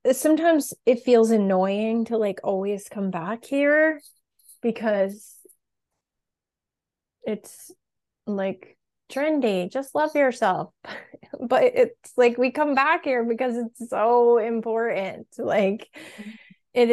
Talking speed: 105 wpm